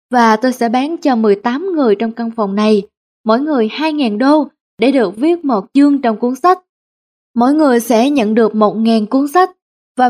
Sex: female